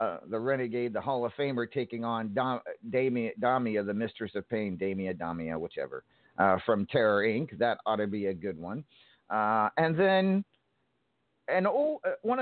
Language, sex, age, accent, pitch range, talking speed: English, male, 50-69, American, 105-130 Hz, 175 wpm